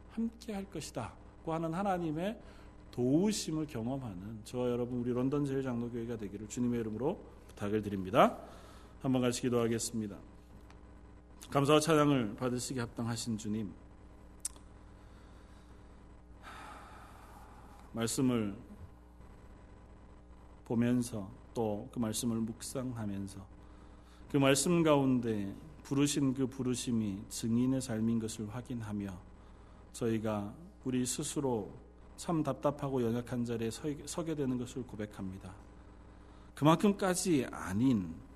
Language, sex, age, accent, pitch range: Korean, male, 40-59, native, 105-150 Hz